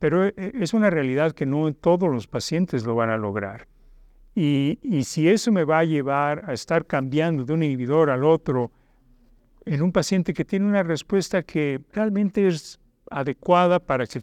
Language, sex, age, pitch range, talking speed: Spanish, male, 50-69, 135-170 Hz, 175 wpm